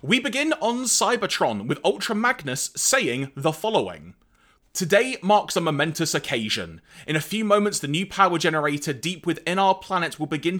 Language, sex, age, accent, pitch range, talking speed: English, male, 30-49, British, 145-205 Hz, 165 wpm